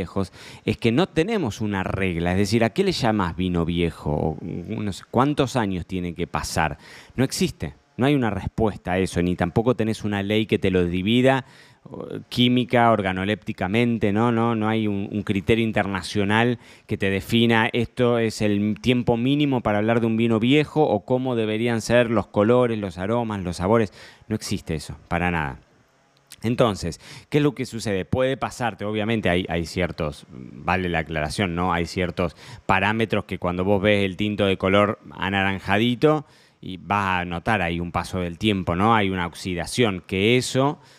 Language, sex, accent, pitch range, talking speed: Spanish, male, Argentinian, 90-115 Hz, 170 wpm